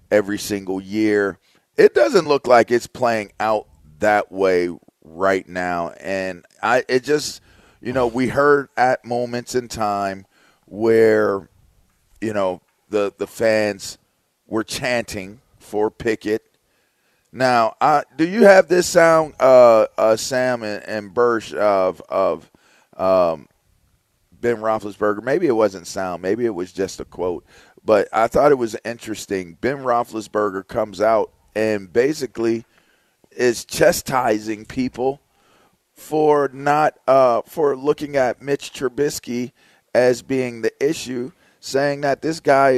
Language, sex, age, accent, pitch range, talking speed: English, male, 40-59, American, 105-135 Hz, 135 wpm